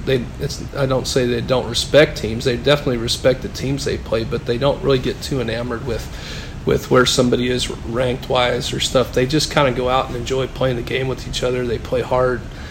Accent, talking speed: American, 225 wpm